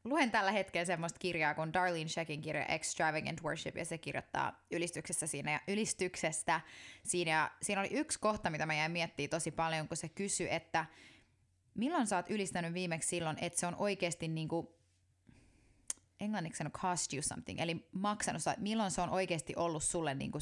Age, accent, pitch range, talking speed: 20-39, native, 155-185 Hz, 175 wpm